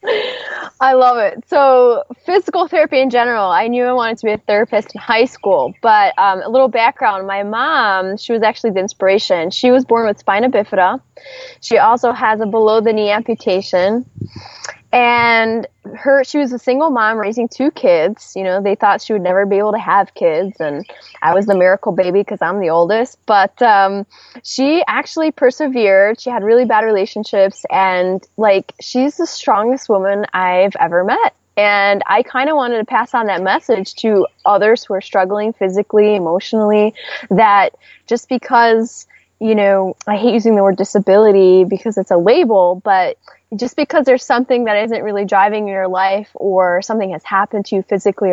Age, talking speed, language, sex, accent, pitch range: 10-29, 180 wpm, English, female, American, 195-245 Hz